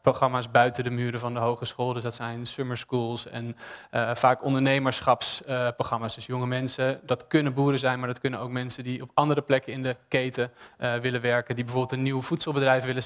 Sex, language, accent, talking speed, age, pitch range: male, English, Dutch, 205 wpm, 20-39, 125-140 Hz